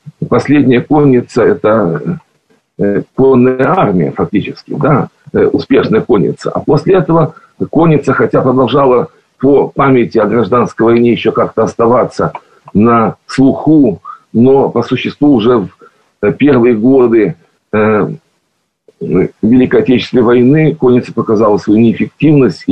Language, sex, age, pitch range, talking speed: Russian, male, 40-59, 115-145 Hz, 105 wpm